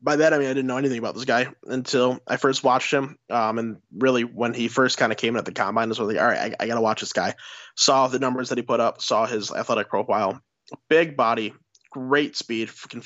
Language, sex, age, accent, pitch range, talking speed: English, male, 20-39, American, 115-140 Hz, 260 wpm